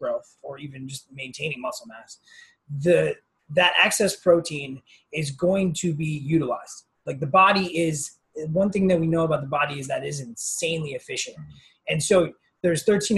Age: 20-39